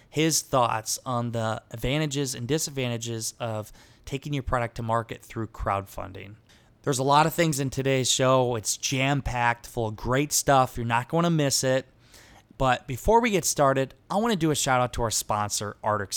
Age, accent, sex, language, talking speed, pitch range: 20-39, American, male, English, 185 wpm, 115-145 Hz